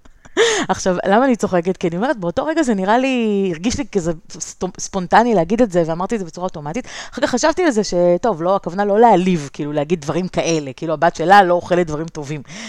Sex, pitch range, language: female, 165-225 Hz, Hebrew